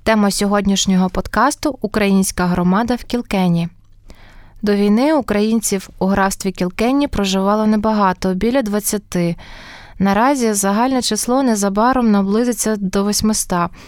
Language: Ukrainian